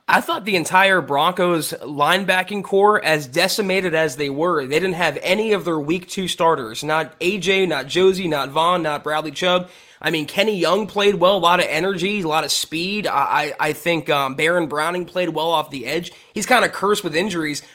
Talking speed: 210 wpm